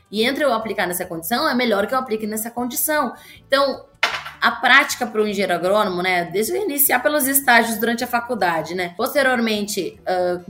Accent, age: Brazilian, 20-39